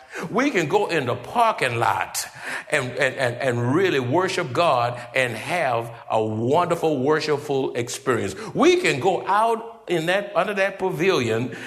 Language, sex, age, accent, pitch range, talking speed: English, male, 60-79, American, 130-205 Hz, 150 wpm